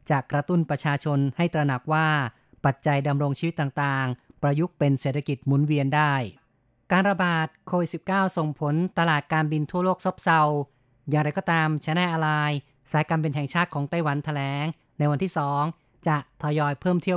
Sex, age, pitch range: female, 30-49, 140-165 Hz